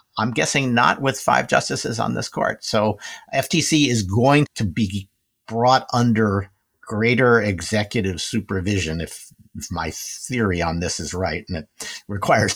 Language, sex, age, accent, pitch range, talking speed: English, male, 50-69, American, 95-125 Hz, 145 wpm